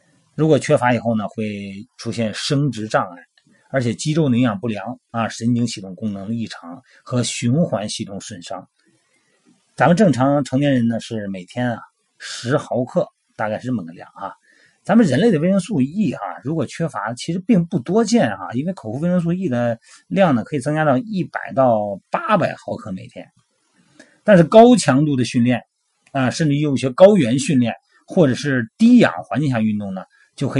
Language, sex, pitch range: Chinese, male, 115-180 Hz